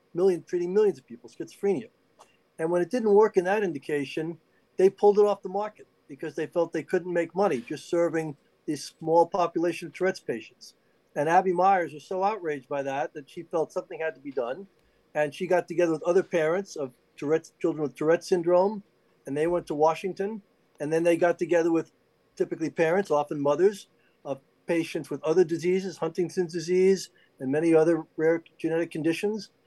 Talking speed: 180 wpm